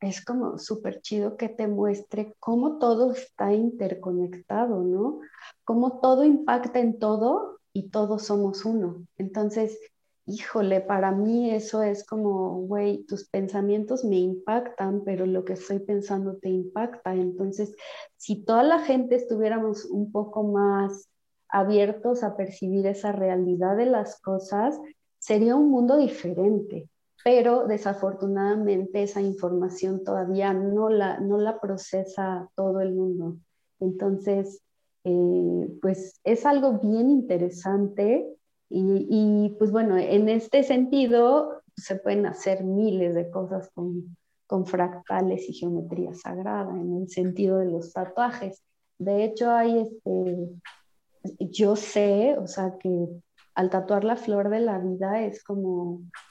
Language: Spanish